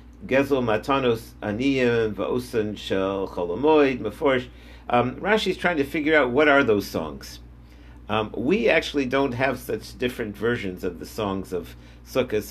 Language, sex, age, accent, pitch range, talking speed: English, male, 50-69, American, 90-125 Hz, 110 wpm